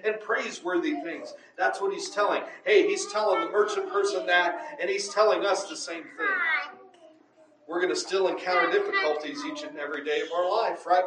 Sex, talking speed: male, 190 wpm